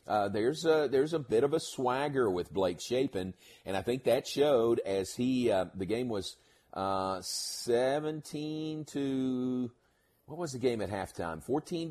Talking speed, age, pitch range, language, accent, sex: 160 wpm, 40-59, 95-125 Hz, English, American, male